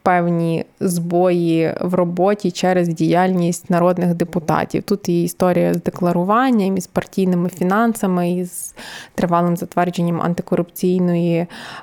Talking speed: 110 wpm